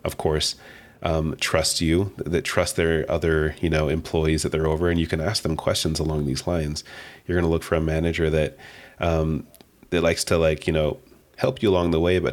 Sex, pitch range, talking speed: male, 80-85 Hz, 220 wpm